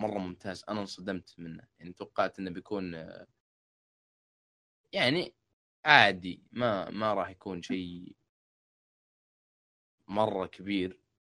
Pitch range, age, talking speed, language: 90-105 Hz, 20-39, 95 wpm, Arabic